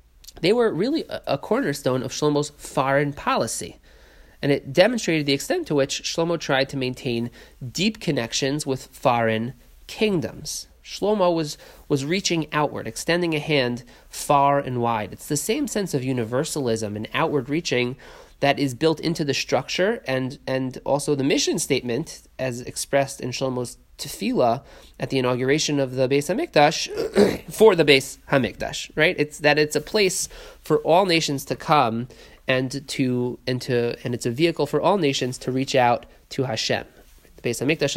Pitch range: 125-150 Hz